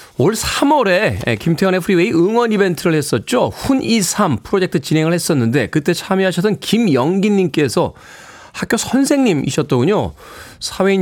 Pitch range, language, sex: 135-190 Hz, Korean, male